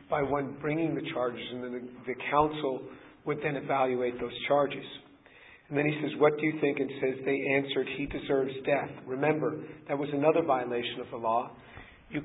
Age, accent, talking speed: 50-69, American, 185 wpm